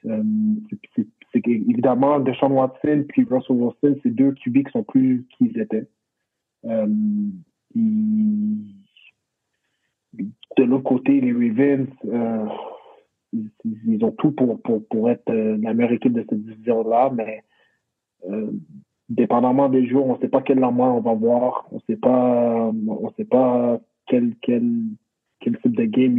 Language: French